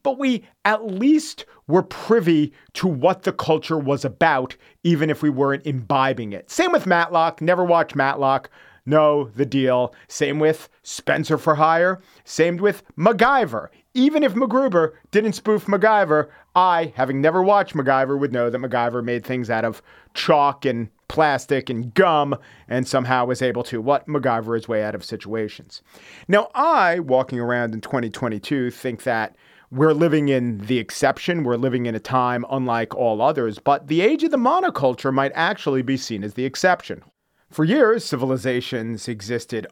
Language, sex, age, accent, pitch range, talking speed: English, male, 40-59, American, 120-170 Hz, 165 wpm